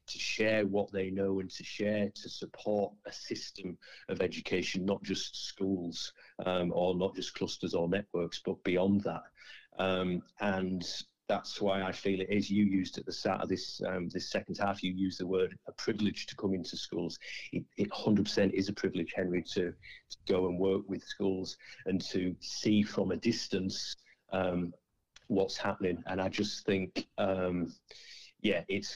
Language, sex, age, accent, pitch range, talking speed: English, male, 40-59, British, 85-95 Hz, 180 wpm